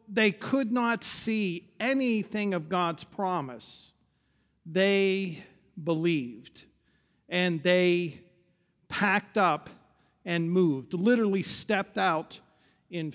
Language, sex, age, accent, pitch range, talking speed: English, male, 50-69, American, 175-225 Hz, 90 wpm